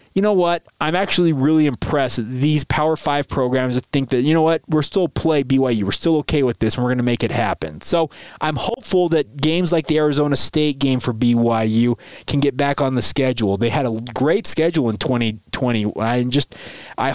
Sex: male